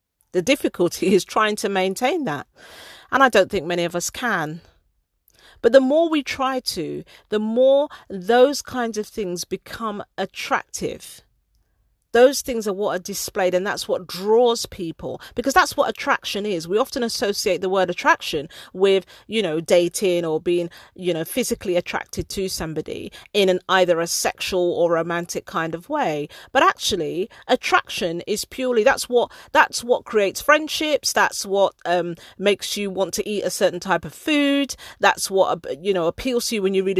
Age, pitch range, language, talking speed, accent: 40-59, 180-270 Hz, English, 175 wpm, British